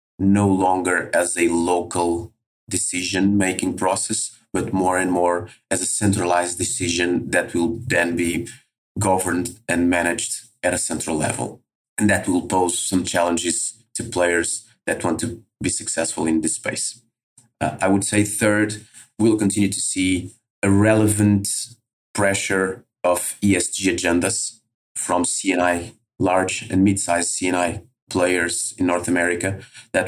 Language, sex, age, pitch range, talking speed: English, male, 30-49, 90-110 Hz, 140 wpm